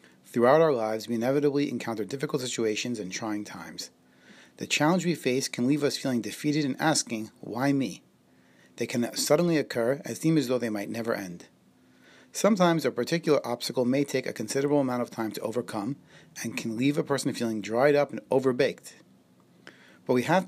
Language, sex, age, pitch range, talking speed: English, male, 30-49, 110-145 Hz, 180 wpm